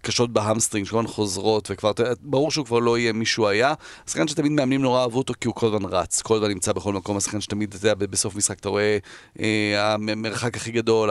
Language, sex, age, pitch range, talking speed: Hebrew, male, 40-59, 110-135 Hz, 230 wpm